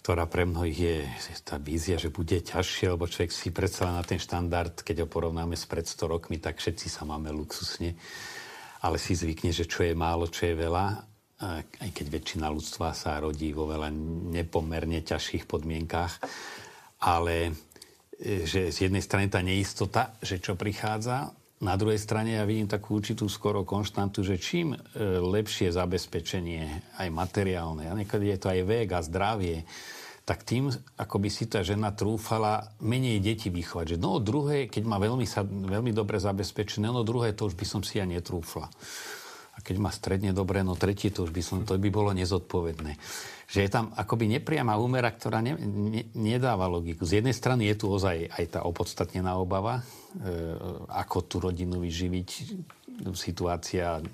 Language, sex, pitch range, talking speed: Slovak, male, 85-105 Hz, 165 wpm